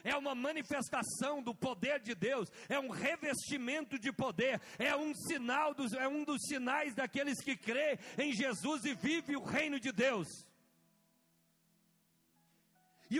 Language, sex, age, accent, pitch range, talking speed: Portuguese, male, 50-69, Brazilian, 255-300 Hz, 145 wpm